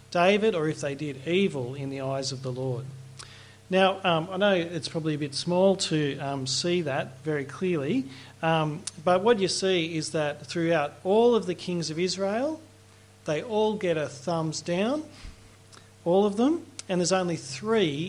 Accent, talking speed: Australian, 180 wpm